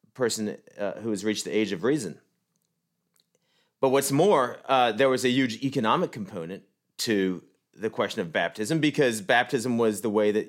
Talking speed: 170 wpm